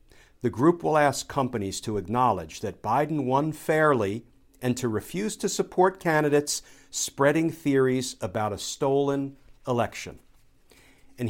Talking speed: 125 wpm